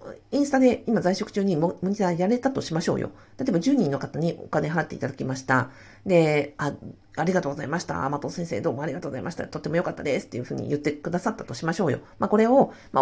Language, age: Japanese, 50-69